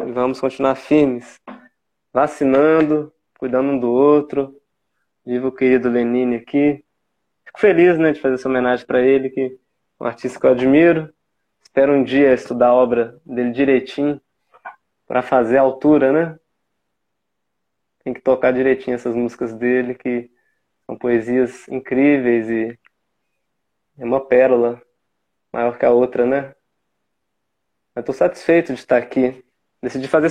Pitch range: 125-155 Hz